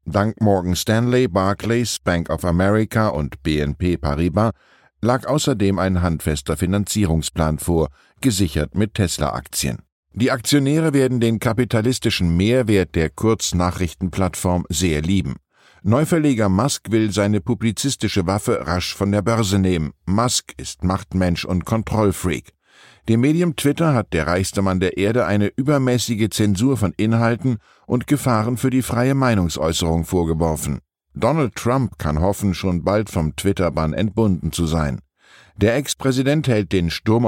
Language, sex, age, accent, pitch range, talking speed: German, male, 50-69, German, 90-120 Hz, 135 wpm